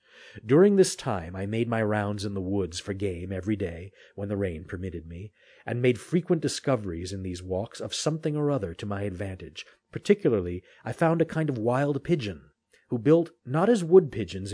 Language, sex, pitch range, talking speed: English, male, 100-145 Hz, 190 wpm